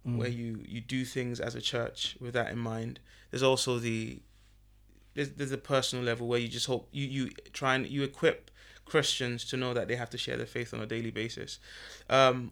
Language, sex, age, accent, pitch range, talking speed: English, male, 20-39, British, 115-140 Hz, 215 wpm